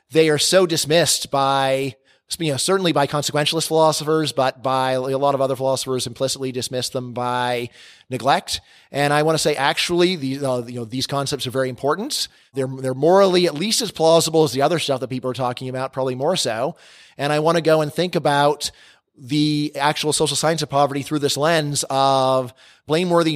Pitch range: 135-155 Hz